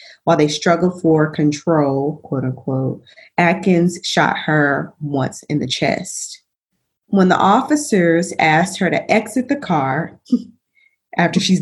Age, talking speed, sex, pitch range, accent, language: 20-39, 130 wpm, female, 150-190 Hz, American, English